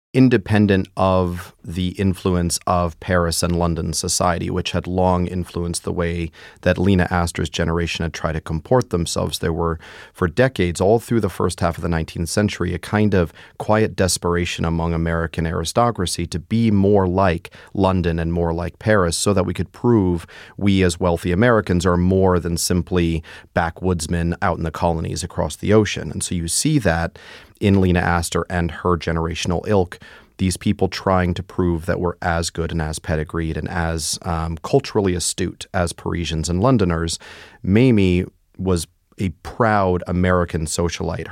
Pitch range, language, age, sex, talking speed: 85-95 Hz, English, 30-49, male, 165 wpm